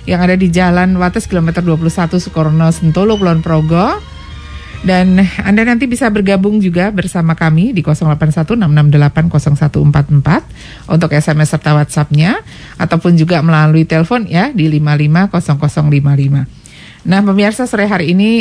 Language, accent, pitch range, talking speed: Indonesian, native, 155-195 Hz, 120 wpm